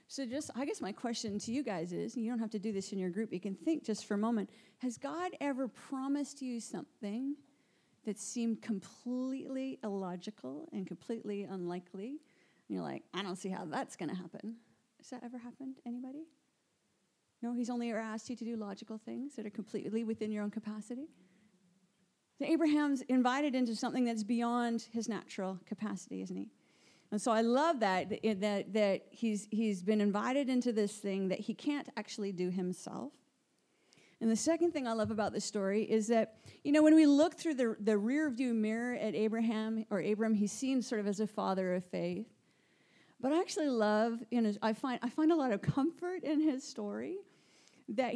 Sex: female